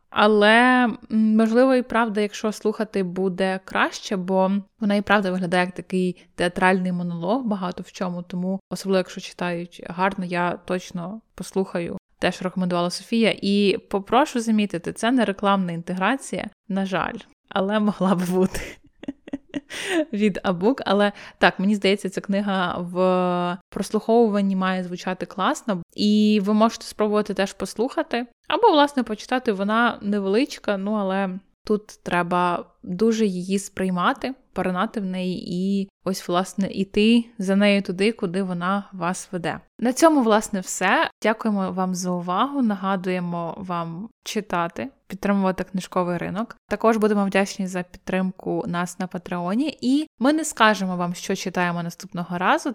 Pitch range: 185-225 Hz